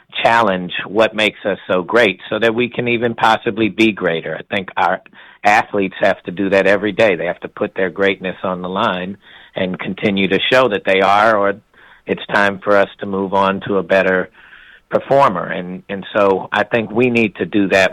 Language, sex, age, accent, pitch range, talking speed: English, male, 50-69, American, 95-105 Hz, 210 wpm